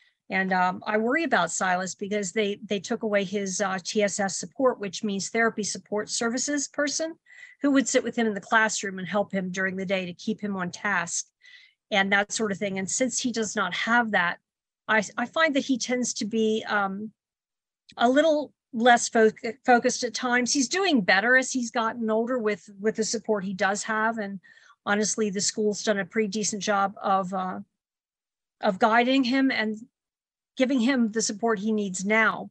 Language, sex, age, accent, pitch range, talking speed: English, female, 50-69, American, 200-245 Hz, 190 wpm